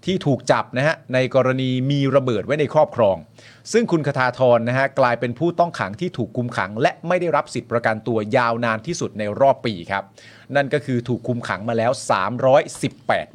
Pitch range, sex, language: 110-140 Hz, male, Thai